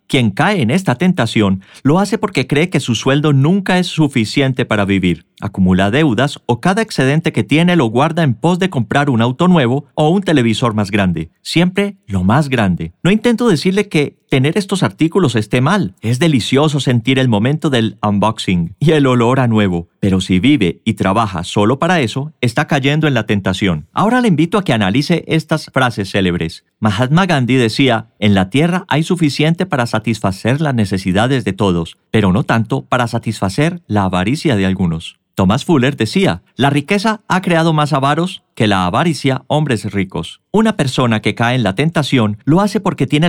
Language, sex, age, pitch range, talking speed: Spanish, male, 40-59, 105-155 Hz, 185 wpm